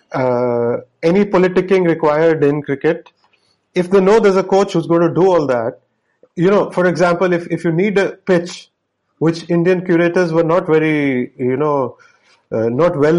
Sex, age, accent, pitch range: male, 30-49, Indian, 145-185 Hz